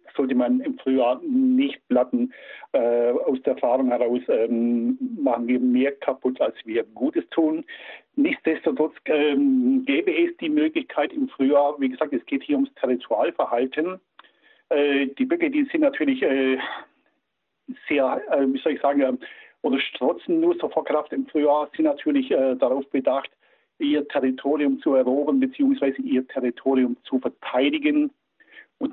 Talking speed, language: 145 wpm, German